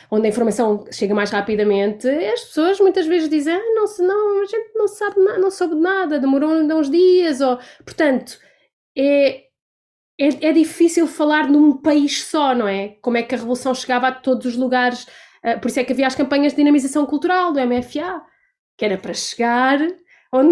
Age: 20-39